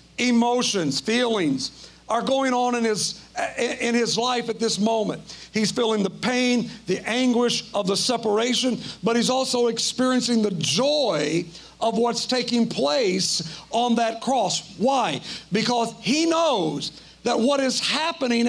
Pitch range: 225-270 Hz